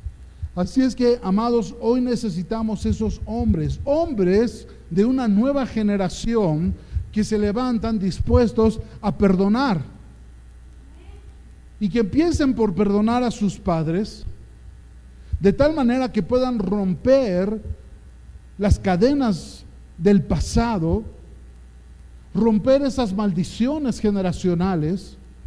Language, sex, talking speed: Spanish, male, 95 wpm